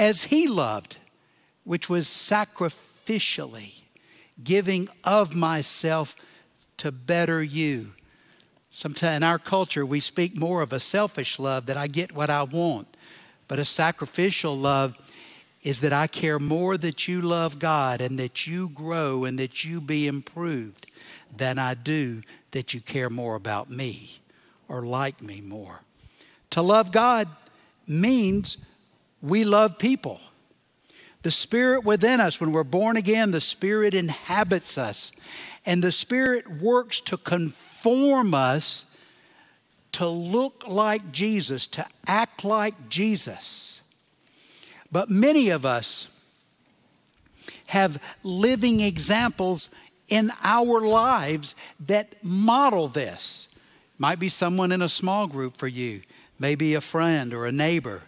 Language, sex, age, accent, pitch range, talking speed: English, male, 60-79, American, 140-205 Hz, 130 wpm